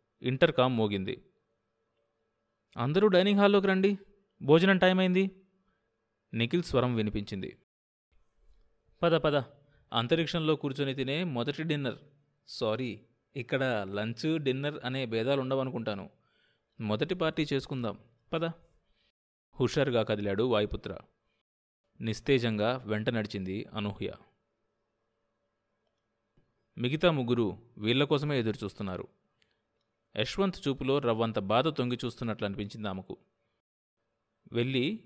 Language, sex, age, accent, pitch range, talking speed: Telugu, male, 30-49, native, 110-150 Hz, 90 wpm